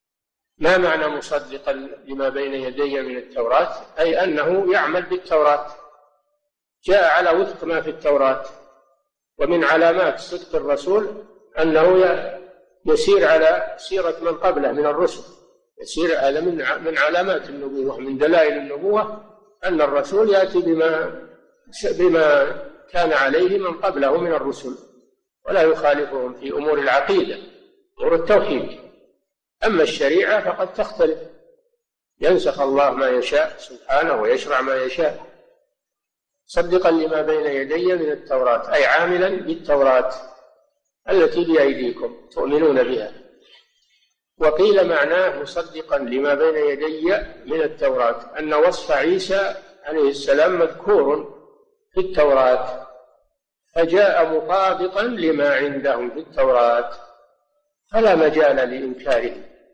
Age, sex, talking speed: 50-69, male, 105 wpm